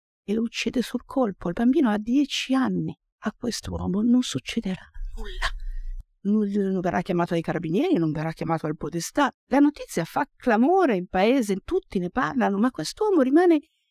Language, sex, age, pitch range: Italian, female, 50-69, 165-240 Hz